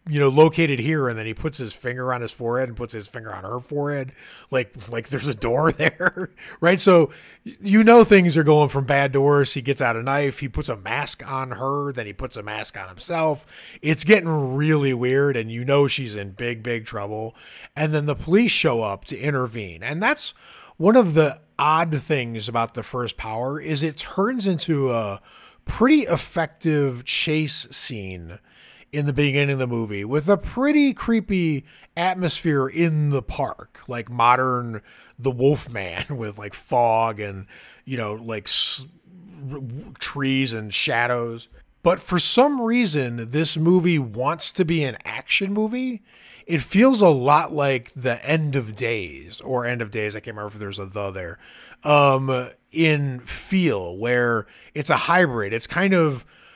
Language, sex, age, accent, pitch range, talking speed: English, male, 30-49, American, 120-160 Hz, 175 wpm